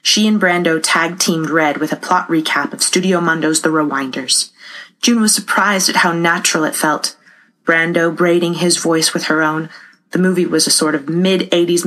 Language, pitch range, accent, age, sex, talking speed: English, 155-180 Hz, American, 30-49, female, 180 wpm